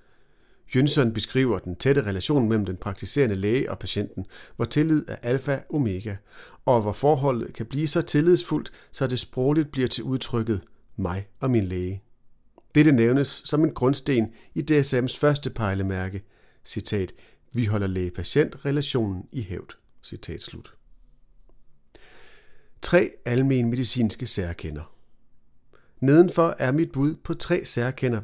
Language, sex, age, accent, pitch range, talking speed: Danish, male, 40-59, native, 105-145 Hz, 125 wpm